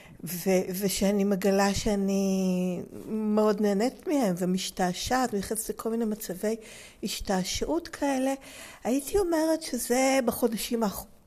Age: 50-69